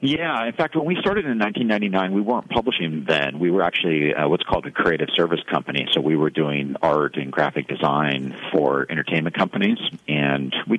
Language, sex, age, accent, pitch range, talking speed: English, male, 50-69, American, 65-75 Hz, 195 wpm